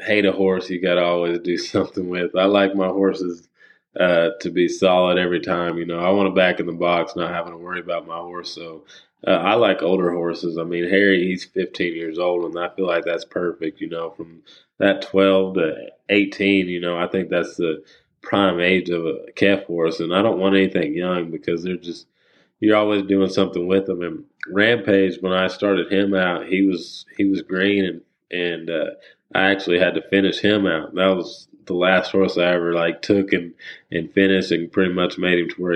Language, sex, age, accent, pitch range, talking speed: English, male, 20-39, American, 85-95 Hz, 215 wpm